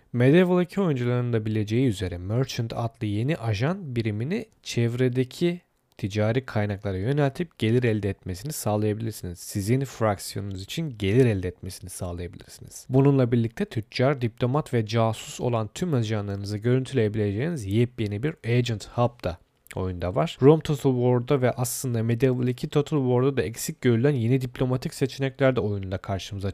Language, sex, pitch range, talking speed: Turkish, male, 110-140 Hz, 135 wpm